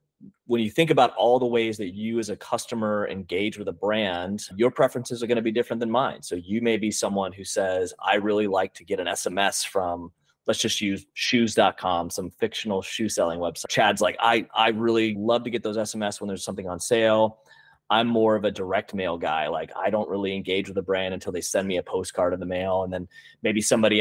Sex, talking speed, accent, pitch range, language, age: male, 230 wpm, American, 95-120 Hz, English, 30-49